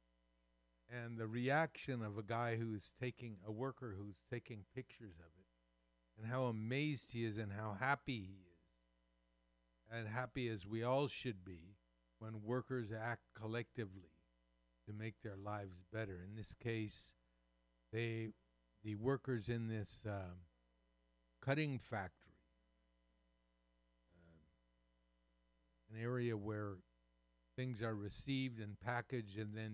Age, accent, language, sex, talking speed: 60-79, American, English, male, 125 wpm